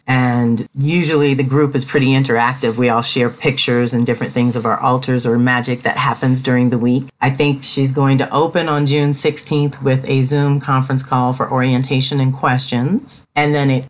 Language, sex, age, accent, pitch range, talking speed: English, female, 40-59, American, 125-145 Hz, 195 wpm